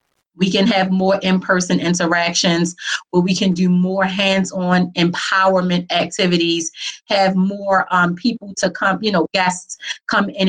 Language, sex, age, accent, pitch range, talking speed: English, female, 30-49, American, 170-195 Hz, 145 wpm